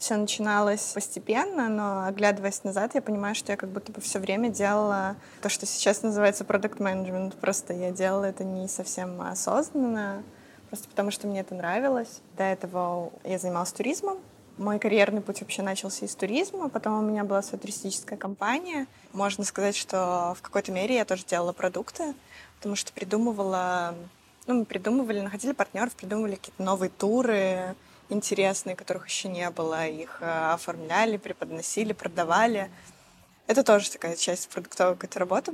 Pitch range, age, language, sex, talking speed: 190-220 Hz, 20-39, Russian, female, 155 wpm